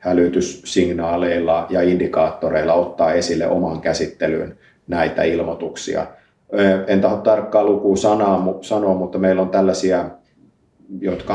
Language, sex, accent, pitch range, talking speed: Finnish, male, native, 85-95 Hz, 100 wpm